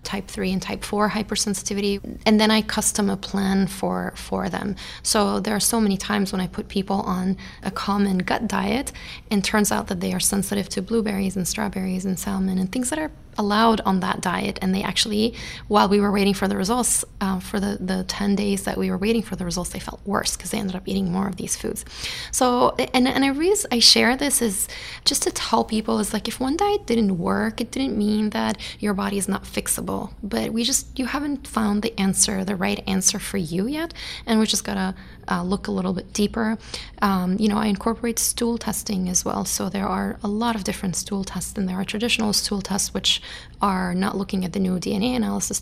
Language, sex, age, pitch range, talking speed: English, female, 20-39, 190-220 Hz, 230 wpm